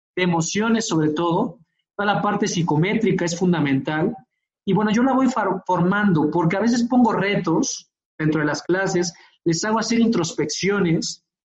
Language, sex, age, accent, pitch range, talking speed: Spanish, male, 40-59, Mexican, 165-230 Hz, 145 wpm